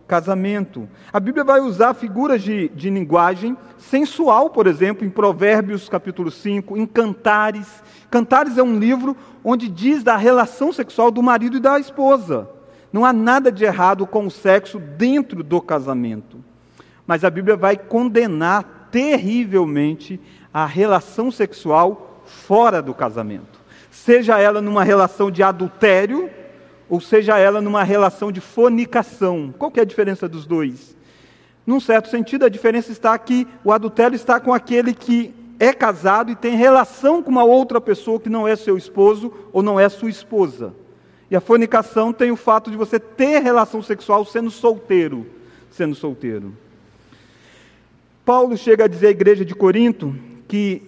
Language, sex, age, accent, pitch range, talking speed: Portuguese, male, 40-59, Brazilian, 190-240 Hz, 155 wpm